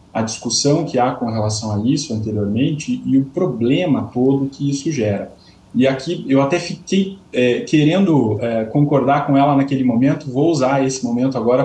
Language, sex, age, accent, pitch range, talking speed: Portuguese, male, 20-39, Brazilian, 115-150 Hz, 175 wpm